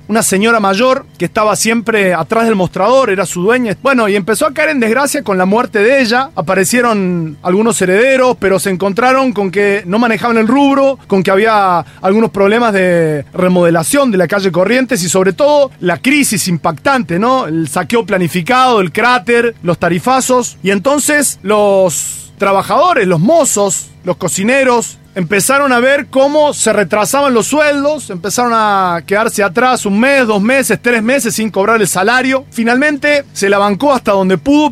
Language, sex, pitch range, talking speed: Spanish, male, 195-265 Hz, 170 wpm